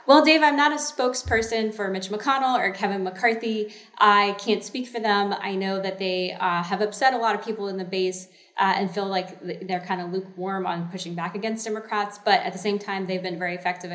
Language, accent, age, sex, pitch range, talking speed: English, American, 20-39, female, 190-235 Hz, 230 wpm